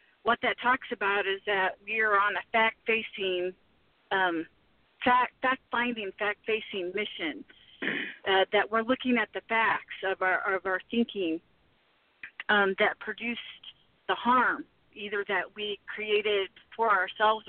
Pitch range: 195-230 Hz